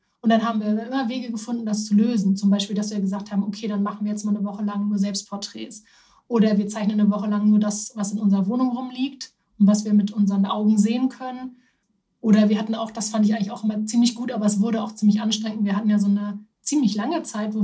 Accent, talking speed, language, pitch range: German, 255 wpm, German, 205-230 Hz